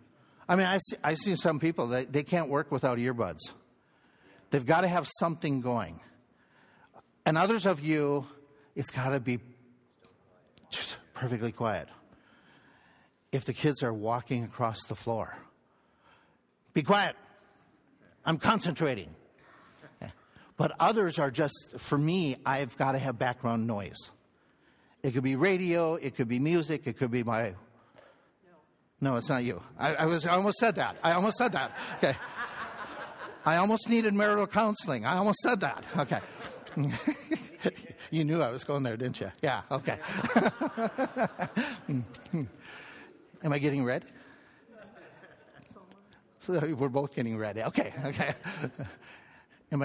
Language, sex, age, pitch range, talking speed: English, male, 60-79, 125-185 Hz, 140 wpm